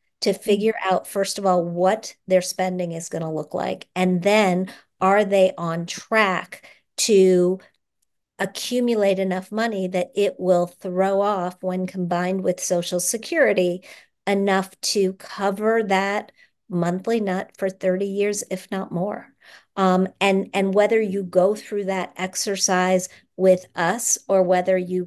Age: 50-69